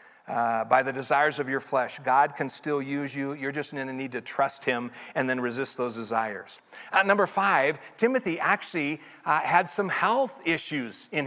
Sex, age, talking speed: male, 50-69, 190 wpm